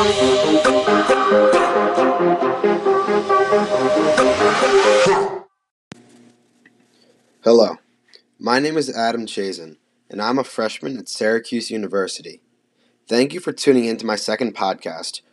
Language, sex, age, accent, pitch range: English, male, 20-39, American, 110-130 Hz